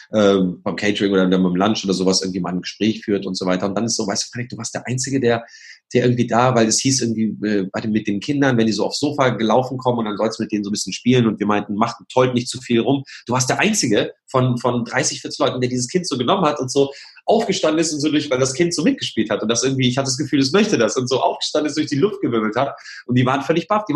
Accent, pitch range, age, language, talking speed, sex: German, 110-145 Hz, 30-49, German, 295 wpm, male